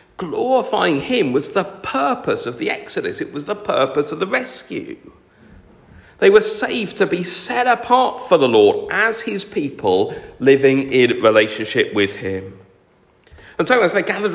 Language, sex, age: English, male, 50-69